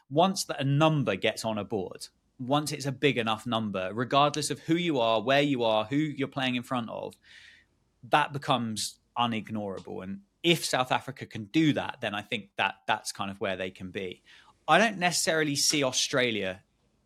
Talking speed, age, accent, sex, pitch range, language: 190 wpm, 20-39, British, male, 105-140 Hz, English